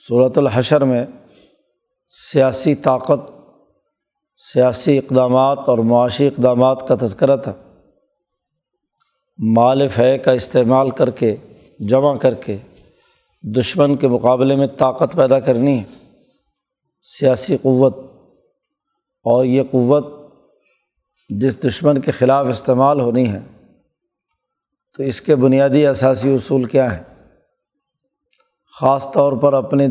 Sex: male